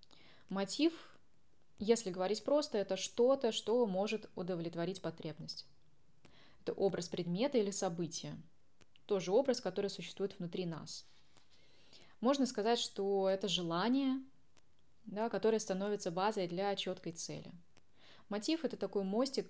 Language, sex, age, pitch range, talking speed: Russian, female, 20-39, 175-220 Hz, 110 wpm